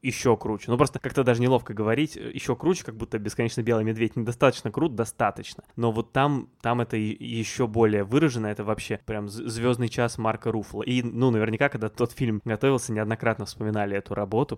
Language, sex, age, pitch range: Russian, male, 20-39, 110-130 Hz